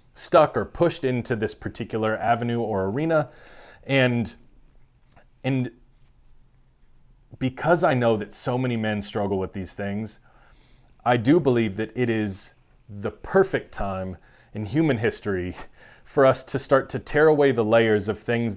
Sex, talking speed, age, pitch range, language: male, 145 wpm, 30-49, 110-140 Hz, English